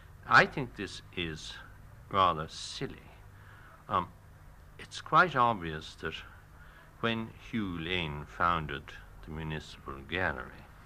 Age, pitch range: 60-79, 85-115 Hz